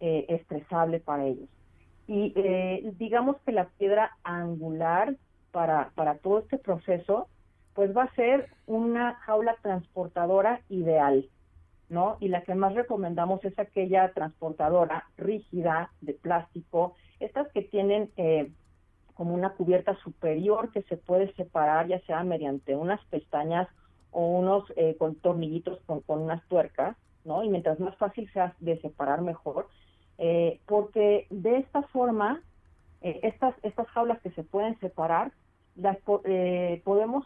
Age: 40-59